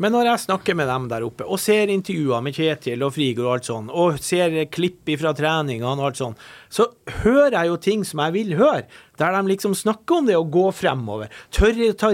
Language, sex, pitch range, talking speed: English, male, 135-220 Hz, 225 wpm